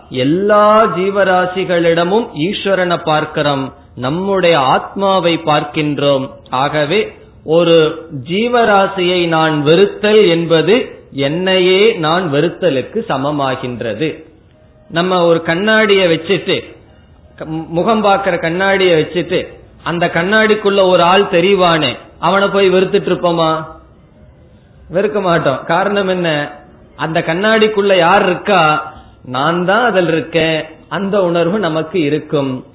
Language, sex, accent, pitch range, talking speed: Tamil, male, native, 155-195 Hz, 90 wpm